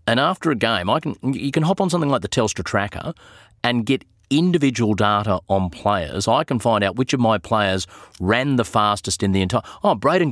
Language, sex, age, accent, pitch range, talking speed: English, male, 30-49, Australian, 95-125 Hz, 215 wpm